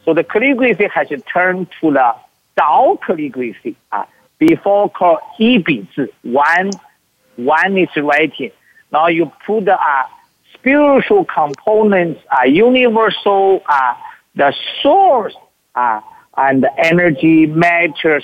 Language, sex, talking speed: English, male, 120 wpm